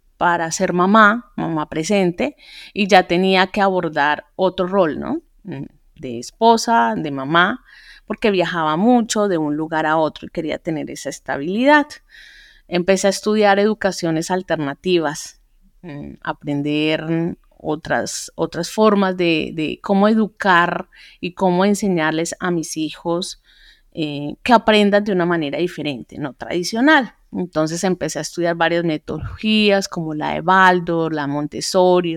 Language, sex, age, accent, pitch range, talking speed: English, female, 30-49, Colombian, 160-205 Hz, 130 wpm